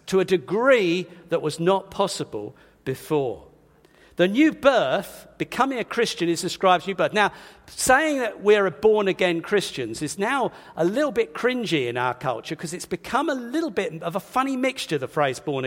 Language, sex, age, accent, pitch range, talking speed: English, male, 50-69, British, 160-230 Hz, 185 wpm